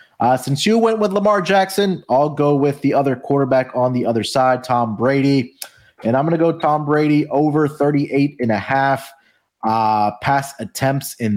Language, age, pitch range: English, 20-39, 115-145 Hz